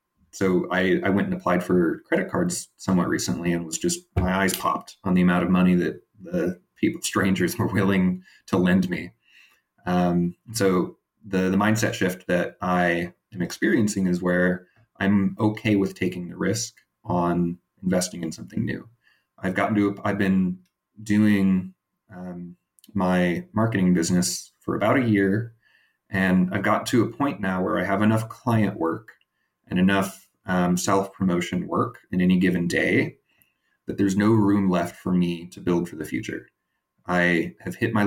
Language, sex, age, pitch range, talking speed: English, male, 30-49, 90-100 Hz, 165 wpm